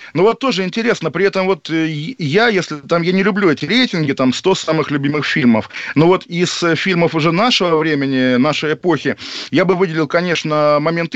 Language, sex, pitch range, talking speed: Russian, male, 140-165 Hz, 185 wpm